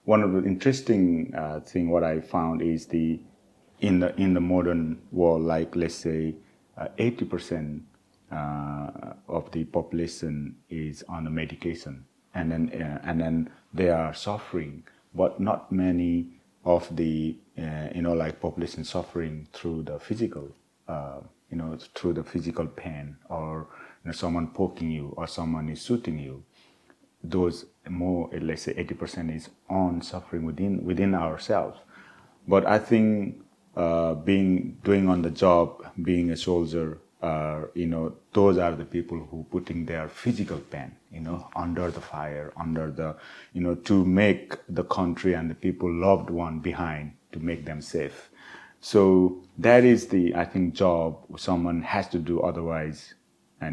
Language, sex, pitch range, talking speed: English, male, 80-90 Hz, 160 wpm